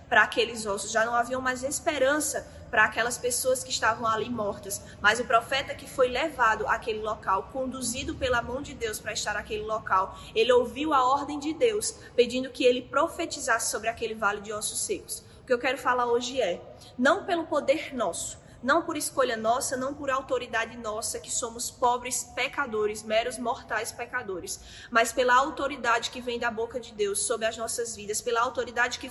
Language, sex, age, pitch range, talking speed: Portuguese, female, 20-39, 225-265 Hz, 185 wpm